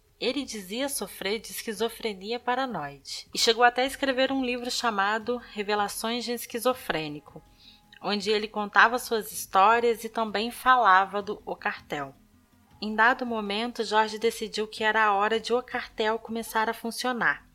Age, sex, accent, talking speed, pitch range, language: 20-39, female, Brazilian, 145 wpm, 185-235 Hz, Portuguese